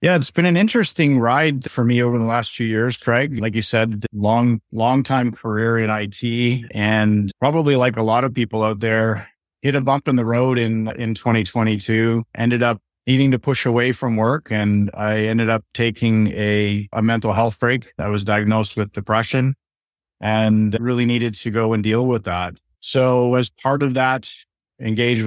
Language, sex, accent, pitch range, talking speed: English, male, American, 110-120 Hz, 190 wpm